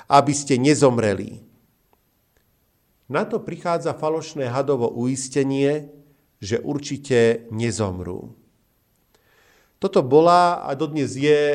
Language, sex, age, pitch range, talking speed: Slovak, male, 50-69, 115-155 Hz, 90 wpm